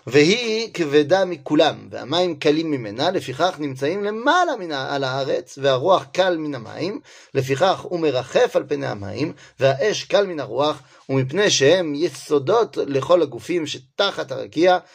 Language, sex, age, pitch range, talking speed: French, male, 30-49, 135-230 Hz, 125 wpm